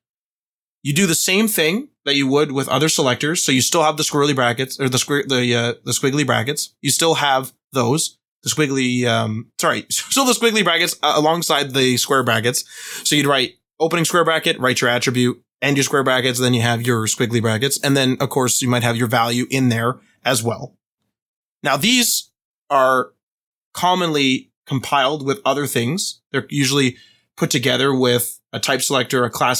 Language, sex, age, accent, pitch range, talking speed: English, male, 20-39, American, 125-155 Hz, 190 wpm